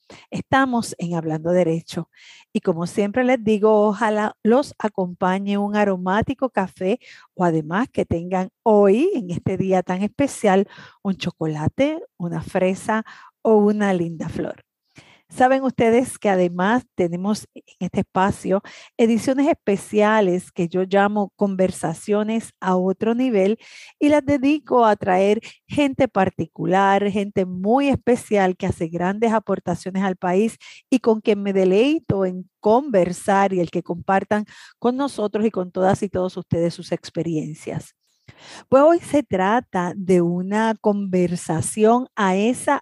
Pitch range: 180-225 Hz